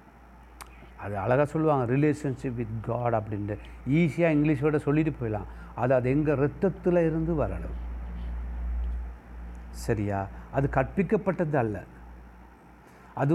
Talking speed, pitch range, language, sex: 100 wpm, 100-150 Hz, Tamil, male